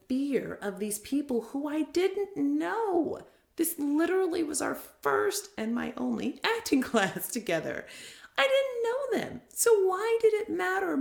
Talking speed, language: 155 wpm, English